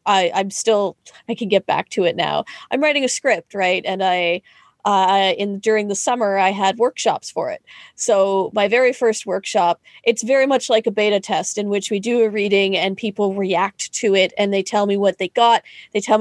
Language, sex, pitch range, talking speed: English, female, 205-265 Hz, 220 wpm